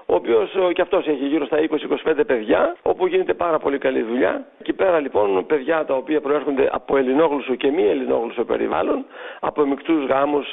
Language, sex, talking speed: Greek, male, 175 wpm